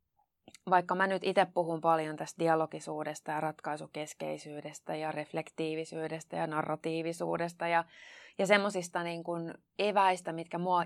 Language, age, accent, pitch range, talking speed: Finnish, 20-39, native, 160-185 Hz, 115 wpm